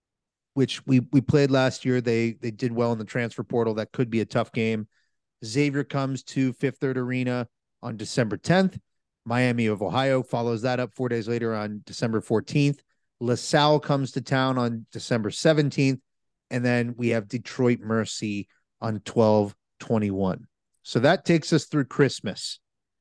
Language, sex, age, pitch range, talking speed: English, male, 30-49, 115-145 Hz, 160 wpm